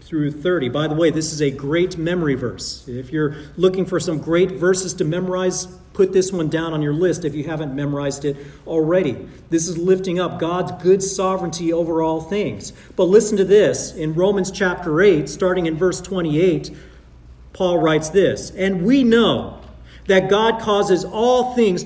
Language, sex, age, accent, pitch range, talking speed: English, male, 40-59, American, 160-210 Hz, 180 wpm